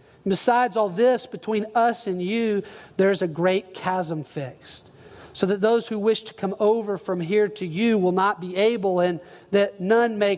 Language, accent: English, American